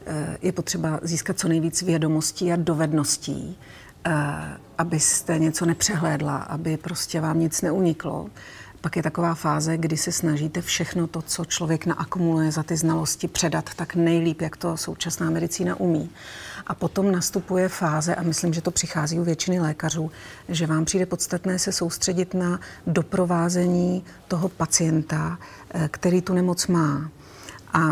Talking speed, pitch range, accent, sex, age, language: 140 wpm, 155-175 Hz, native, female, 40-59, Czech